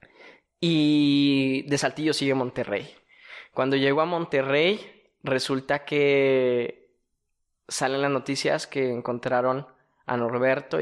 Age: 20-39